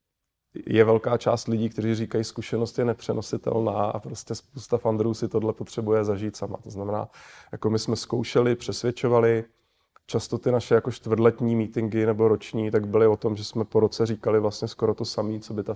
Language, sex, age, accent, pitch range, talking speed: Czech, male, 30-49, native, 105-115 Hz, 185 wpm